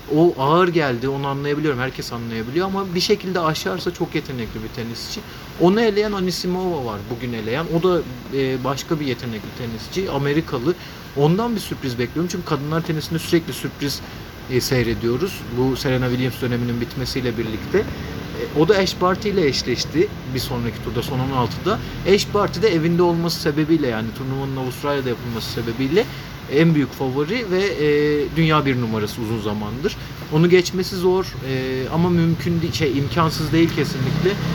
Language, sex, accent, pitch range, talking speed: Turkish, male, native, 130-170 Hz, 150 wpm